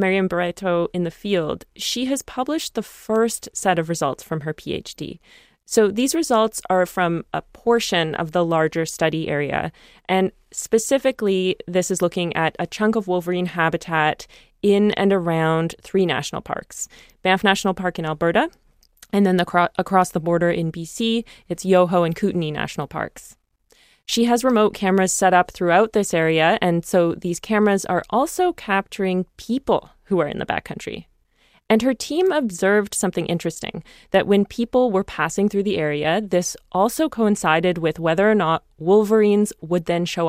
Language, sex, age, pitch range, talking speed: English, female, 20-39, 170-210 Hz, 165 wpm